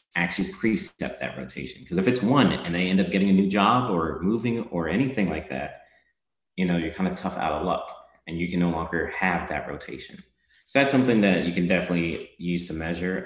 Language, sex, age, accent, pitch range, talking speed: English, male, 30-49, American, 75-90 Hz, 220 wpm